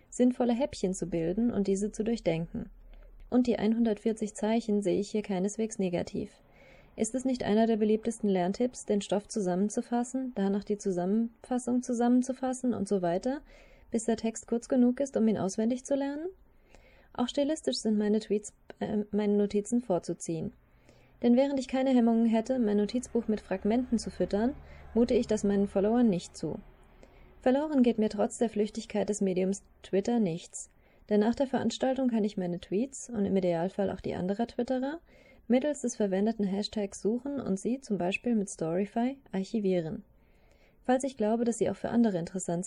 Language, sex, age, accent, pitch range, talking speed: German, female, 20-39, German, 195-240 Hz, 165 wpm